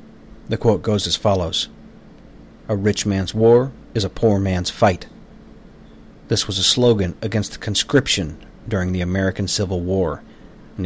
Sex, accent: male, American